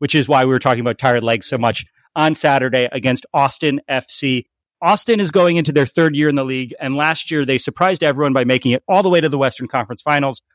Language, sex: English, male